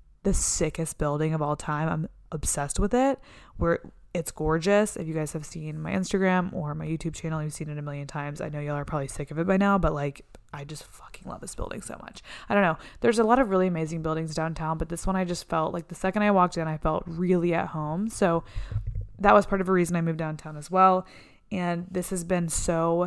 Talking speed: 250 wpm